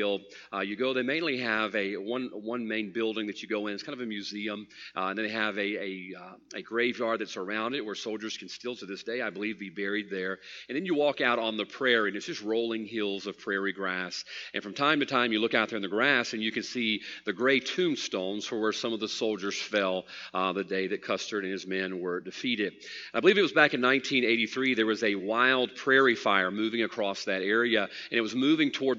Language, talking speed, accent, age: English, 245 wpm, American, 40-59